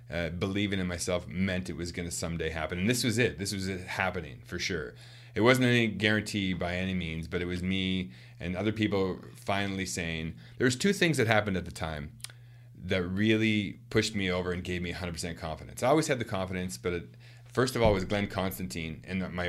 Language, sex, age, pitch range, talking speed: English, male, 30-49, 85-110 Hz, 210 wpm